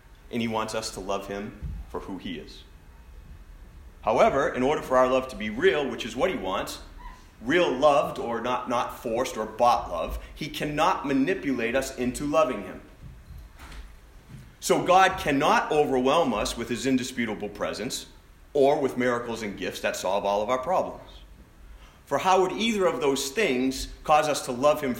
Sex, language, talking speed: male, English, 175 wpm